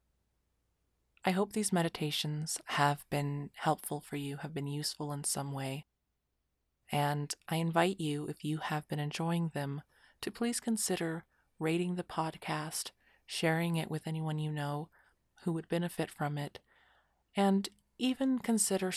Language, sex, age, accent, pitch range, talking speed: English, female, 30-49, American, 145-195 Hz, 140 wpm